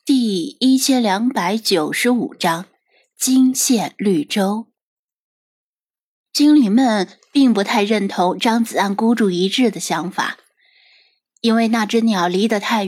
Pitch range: 185-255 Hz